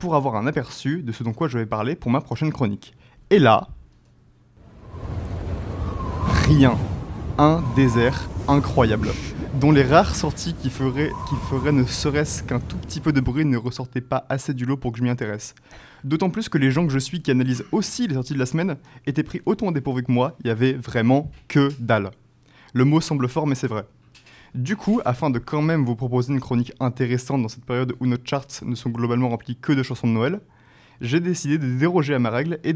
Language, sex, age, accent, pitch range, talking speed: French, male, 20-39, French, 120-145 Hz, 215 wpm